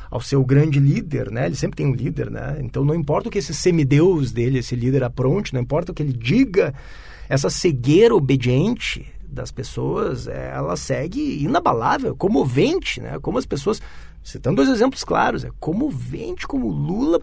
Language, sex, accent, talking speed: Portuguese, male, Brazilian, 170 wpm